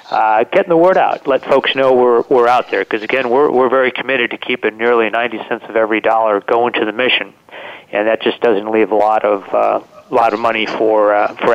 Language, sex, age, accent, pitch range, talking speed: English, male, 40-59, American, 110-130 Hz, 235 wpm